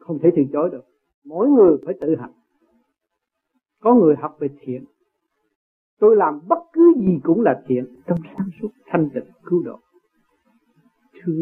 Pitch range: 155-245 Hz